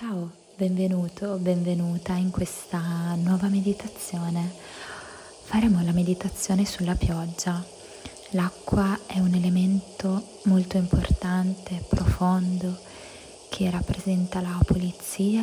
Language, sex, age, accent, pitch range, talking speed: Italian, female, 20-39, native, 170-200 Hz, 95 wpm